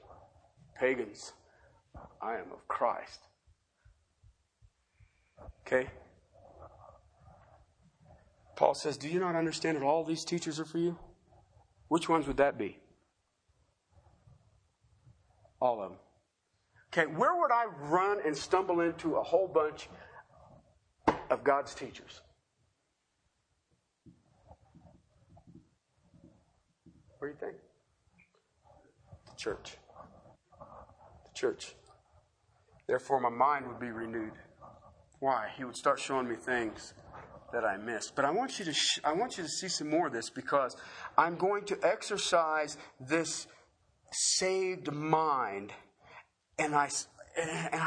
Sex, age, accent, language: male, 50-69, American, English